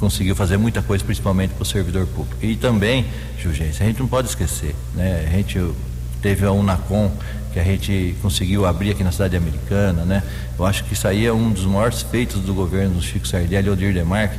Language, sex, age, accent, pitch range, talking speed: Portuguese, male, 60-79, Brazilian, 95-105 Hz, 200 wpm